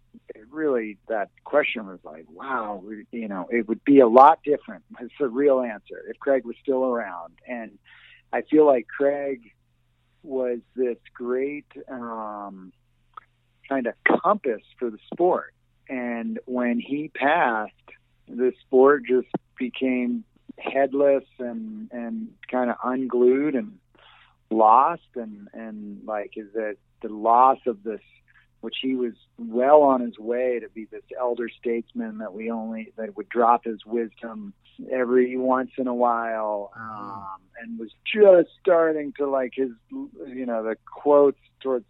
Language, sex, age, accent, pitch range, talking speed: English, male, 50-69, American, 110-130 Hz, 145 wpm